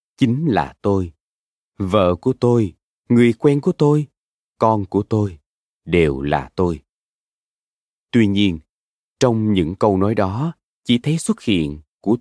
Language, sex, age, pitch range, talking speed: Vietnamese, male, 20-39, 85-125 Hz, 140 wpm